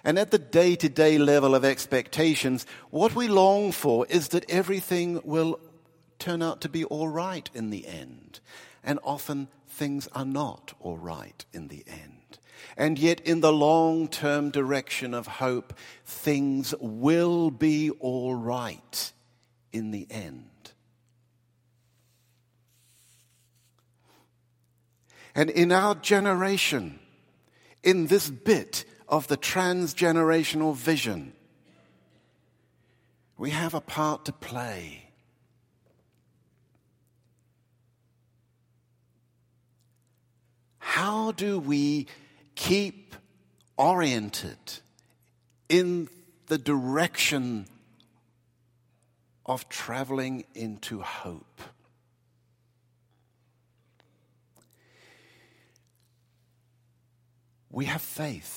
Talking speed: 85 wpm